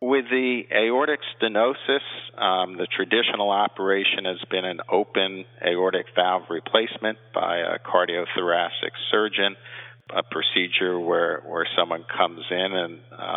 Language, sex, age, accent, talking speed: English, male, 50-69, American, 120 wpm